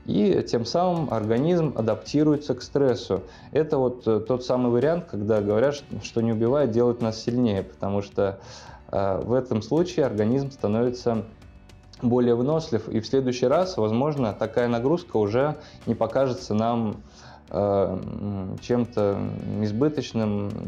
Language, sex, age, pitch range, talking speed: Russian, male, 20-39, 105-130 Hz, 120 wpm